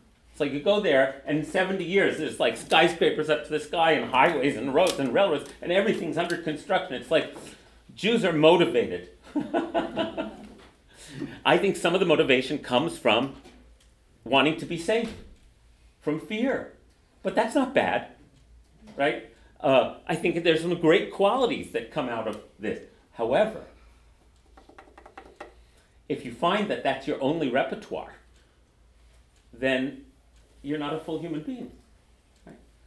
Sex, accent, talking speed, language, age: male, American, 140 wpm, English, 40-59